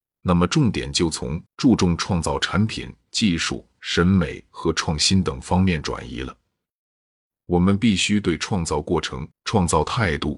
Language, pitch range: Chinese, 80-100 Hz